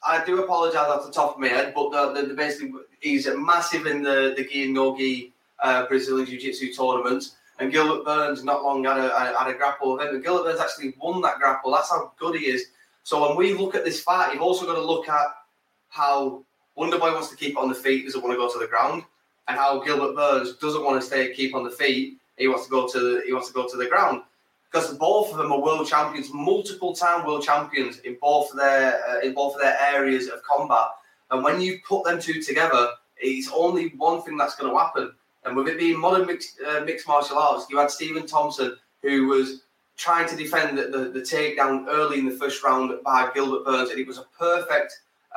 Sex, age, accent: male, 20-39, British